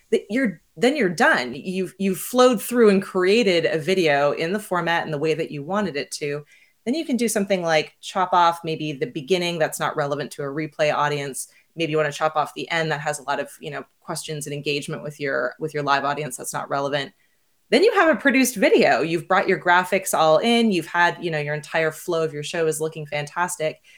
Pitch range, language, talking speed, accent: 150-190 Hz, English, 235 wpm, American